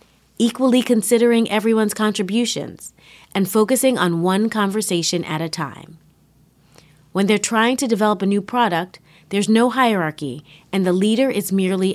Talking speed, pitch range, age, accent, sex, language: 140 wpm, 175-225 Hz, 30-49, American, female, English